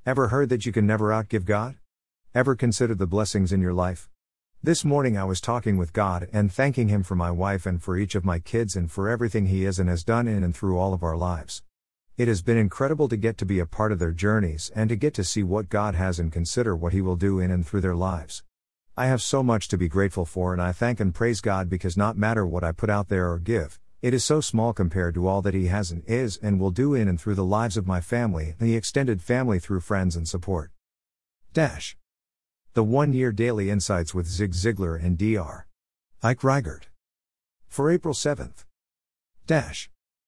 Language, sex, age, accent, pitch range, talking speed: English, male, 50-69, American, 85-115 Hz, 230 wpm